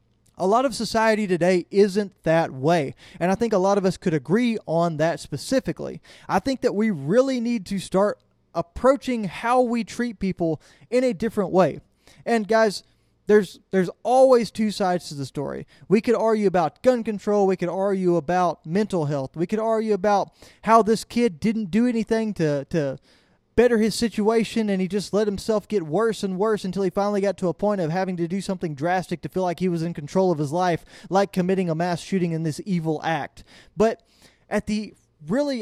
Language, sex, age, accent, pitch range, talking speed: English, male, 20-39, American, 175-220 Hz, 200 wpm